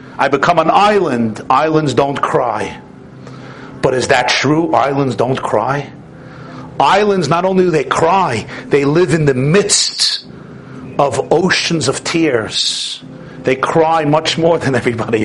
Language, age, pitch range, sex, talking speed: English, 50-69, 145-235 Hz, male, 140 wpm